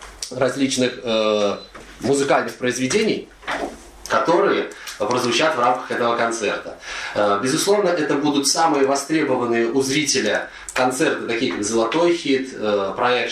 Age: 20-39